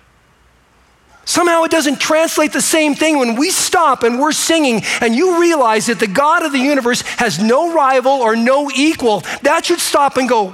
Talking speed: 190 wpm